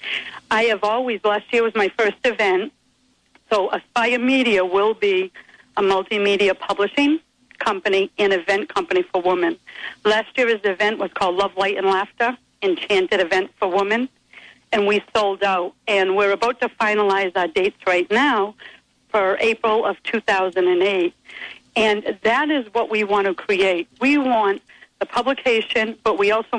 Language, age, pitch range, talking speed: English, 60-79, 195-230 Hz, 155 wpm